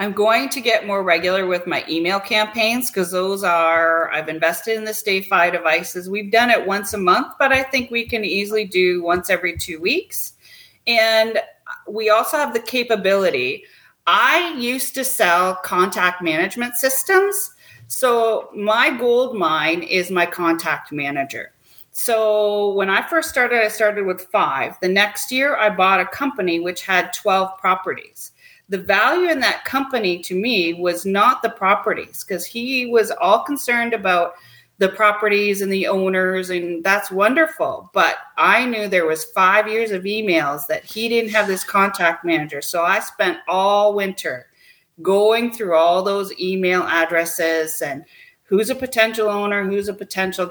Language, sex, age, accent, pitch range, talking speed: English, female, 40-59, American, 180-235 Hz, 165 wpm